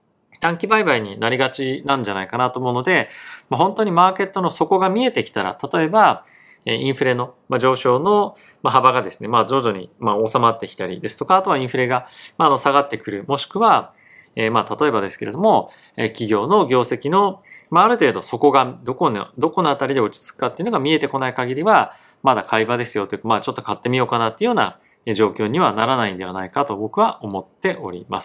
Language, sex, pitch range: Japanese, male, 110-145 Hz